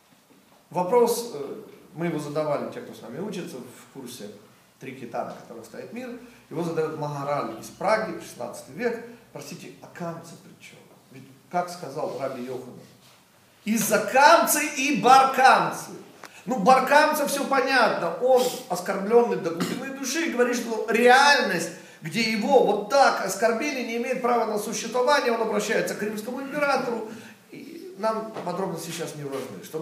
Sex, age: male, 40-59